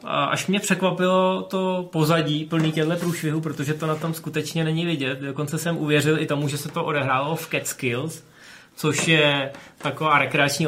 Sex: male